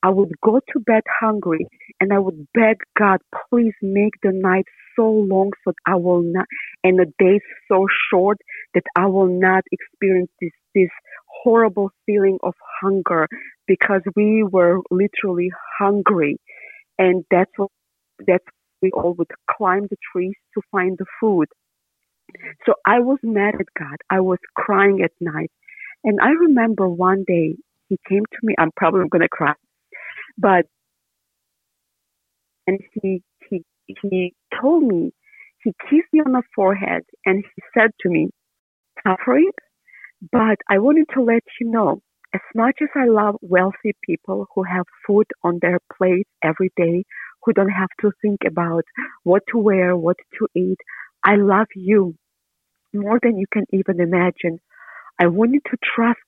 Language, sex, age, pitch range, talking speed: English, female, 40-59, 185-220 Hz, 160 wpm